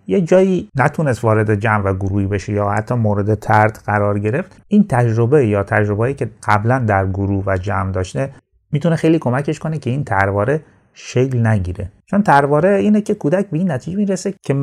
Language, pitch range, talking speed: Persian, 100-140 Hz, 170 wpm